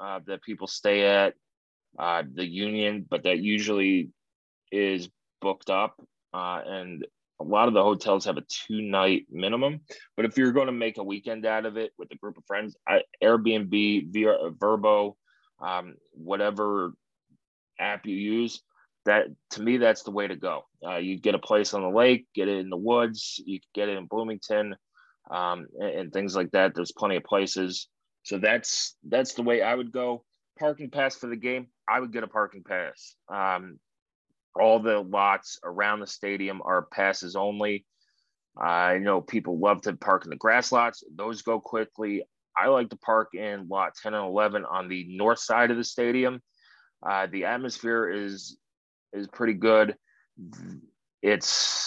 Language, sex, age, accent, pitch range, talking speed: English, male, 20-39, American, 95-115 Hz, 175 wpm